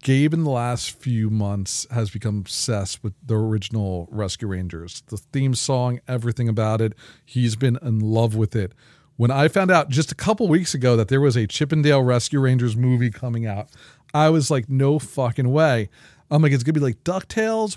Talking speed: 200 wpm